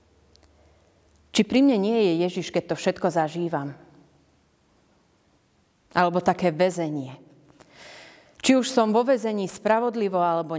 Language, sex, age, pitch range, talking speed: Slovak, female, 30-49, 165-220 Hz, 115 wpm